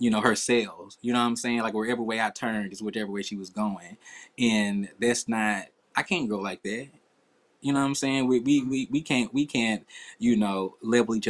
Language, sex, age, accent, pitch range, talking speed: English, male, 20-39, American, 105-130 Hz, 235 wpm